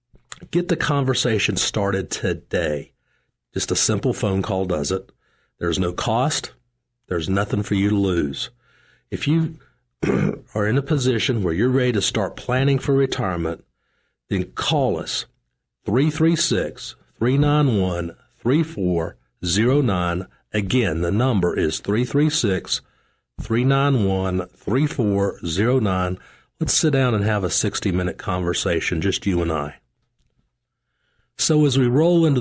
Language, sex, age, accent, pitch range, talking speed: English, male, 50-69, American, 95-125 Hz, 115 wpm